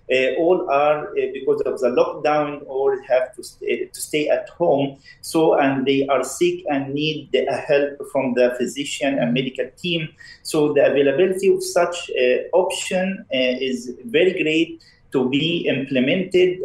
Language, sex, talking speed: English, male, 165 wpm